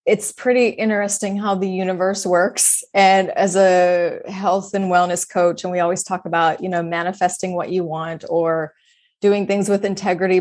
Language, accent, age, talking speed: English, American, 20-39, 175 wpm